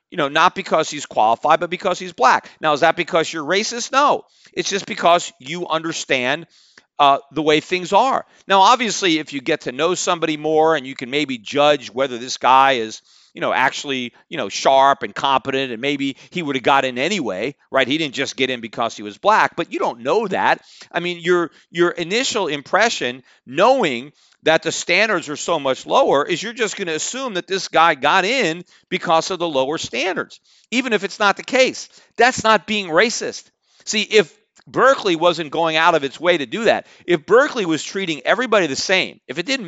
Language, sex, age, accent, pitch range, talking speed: English, male, 40-59, American, 150-210 Hz, 210 wpm